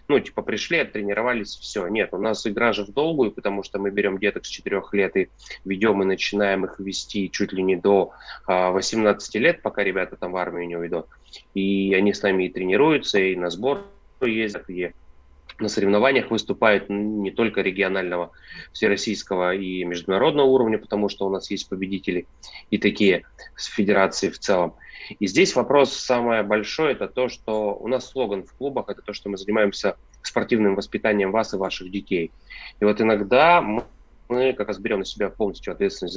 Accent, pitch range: native, 95-110 Hz